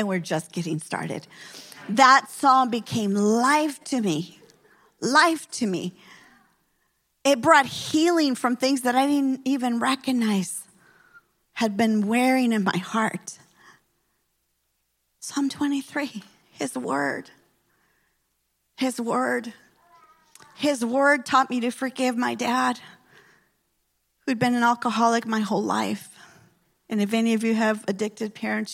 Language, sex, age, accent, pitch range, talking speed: English, female, 40-59, American, 185-245 Hz, 125 wpm